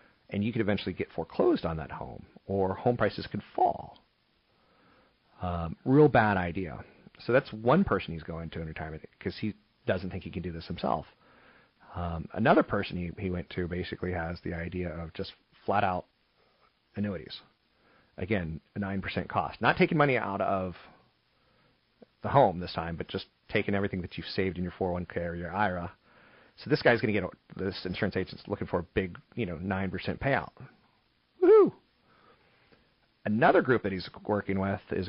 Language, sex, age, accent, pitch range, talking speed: English, male, 40-59, American, 85-100 Hz, 175 wpm